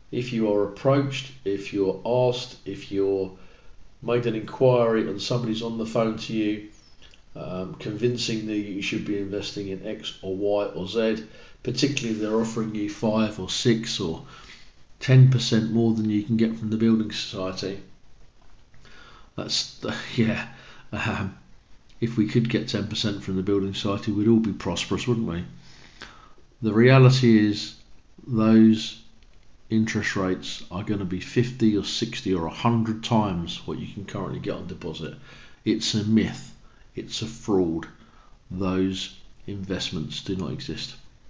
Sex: male